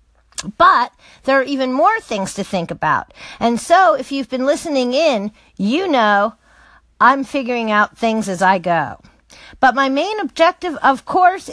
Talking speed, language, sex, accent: 160 wpm, English, female, American